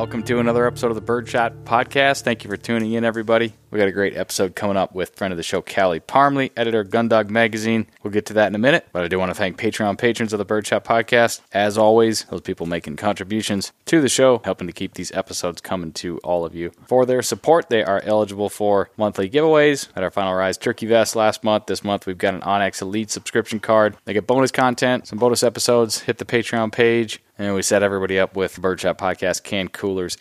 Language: English